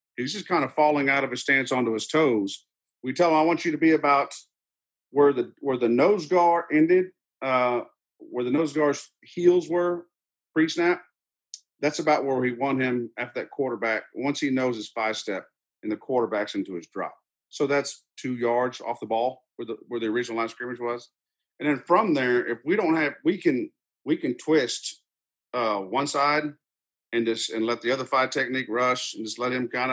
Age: 50-69